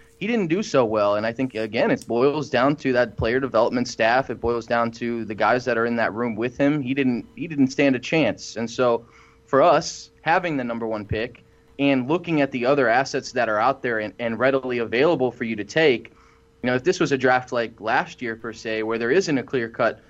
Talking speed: 245 wpm